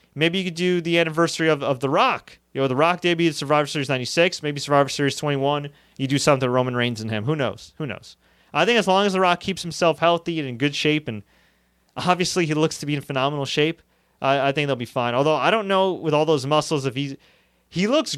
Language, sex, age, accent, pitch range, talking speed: English, male, 30-49, American, 125-170 Hz, 250 wpm